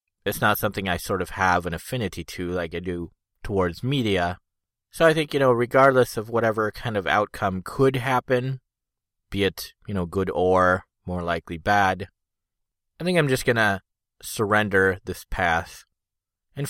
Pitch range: 90-115 Hz